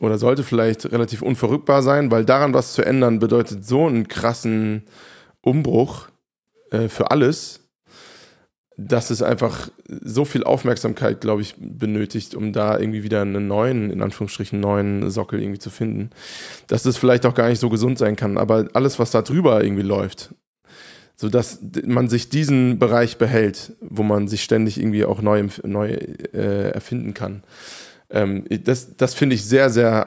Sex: male